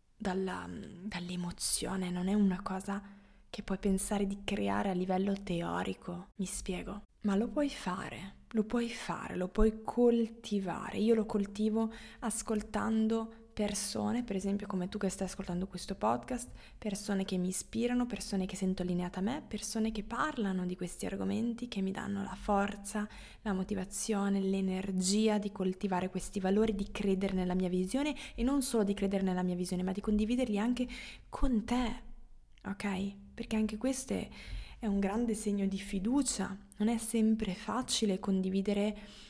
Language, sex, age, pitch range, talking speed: Italian, female, 20-39, 195-220 Hz, 155 wpm